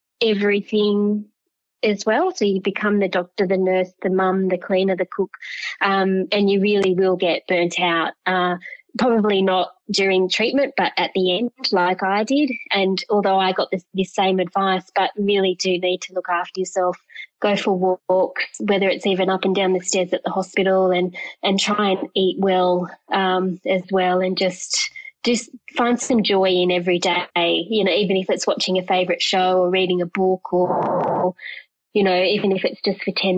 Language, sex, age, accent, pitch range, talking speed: English, female, 20-39, Australian, 180-200 Hz, 190 wpm